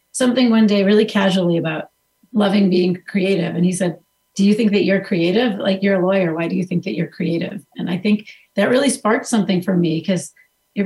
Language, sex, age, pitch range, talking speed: English, female, 30-49, 180-215 Hz, 220 wpm